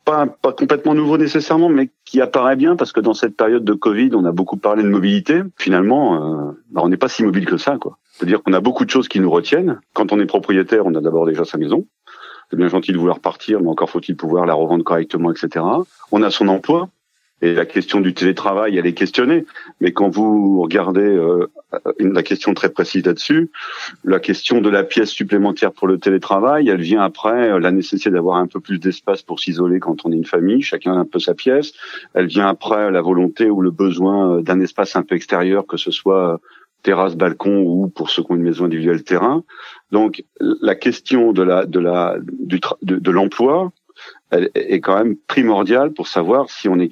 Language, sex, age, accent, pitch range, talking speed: French, male, 40-59, French, 90-130 Hz, 215 wpm